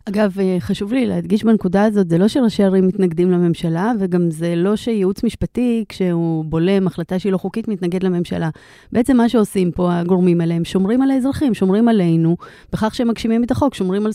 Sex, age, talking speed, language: female, 30-49, 180 wpm, Hebrew